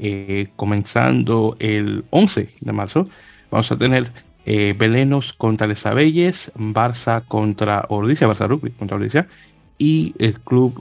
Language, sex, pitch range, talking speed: Spanish, male, 110-130 Hz, 130 wpm